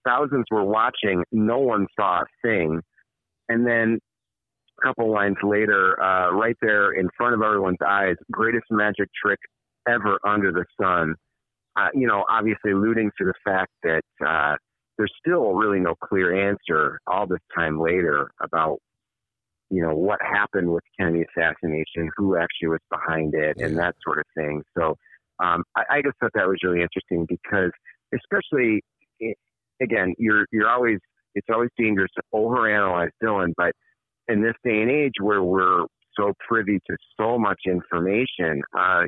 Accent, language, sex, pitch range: American, English, male, 90-115 Hz